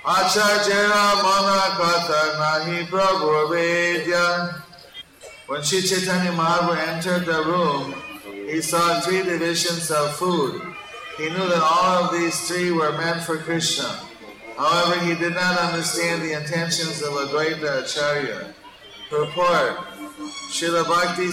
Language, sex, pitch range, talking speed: English, male, 150-170 Hz, 115 wpm